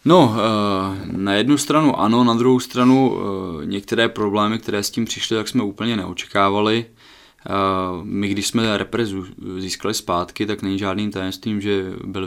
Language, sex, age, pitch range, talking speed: Czech, male, 20-39, 95-105 Hz, 150 wpm